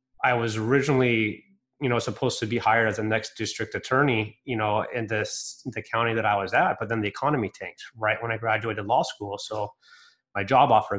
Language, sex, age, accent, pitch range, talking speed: English, male, 30-49, American, 105-125 Hz, 215 wpm